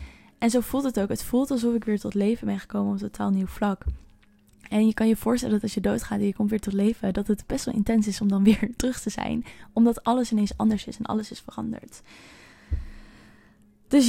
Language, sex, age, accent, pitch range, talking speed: Dutch, female, 10-29, Dutch, 205-235 Hz, 240 wpm